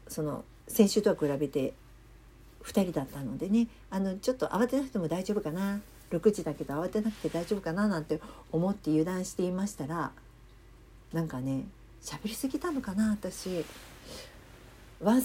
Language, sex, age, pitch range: Japanese, female, 50-69, 150-220 Hz